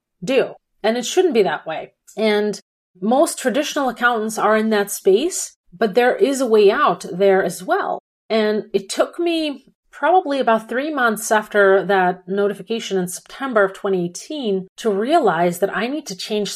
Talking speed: 165 wpm